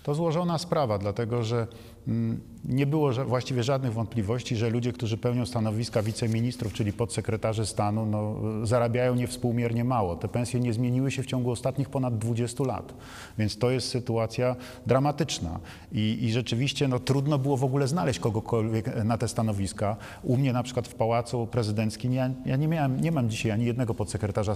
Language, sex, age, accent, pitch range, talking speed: Polish, male, 40-59, native, 110-130 Hz, 160 wpm